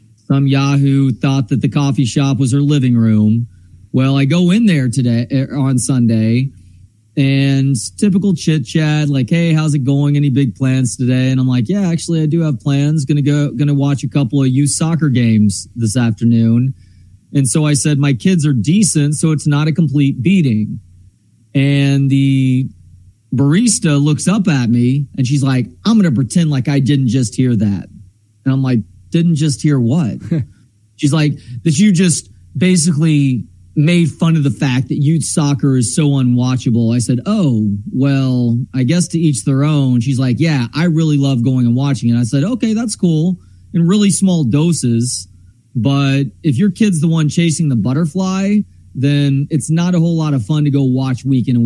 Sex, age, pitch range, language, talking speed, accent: male, 30-49, 120-155 Hz, English, 190 wpm, American